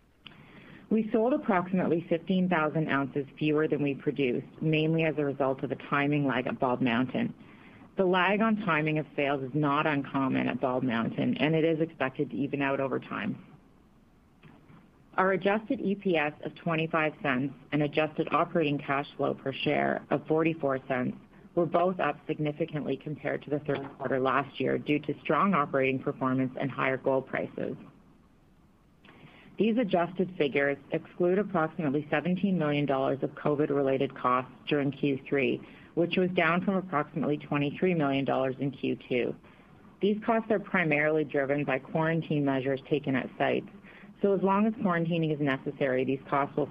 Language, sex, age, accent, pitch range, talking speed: English, female, 40-59, American, 140-175 Hz, 155 wpm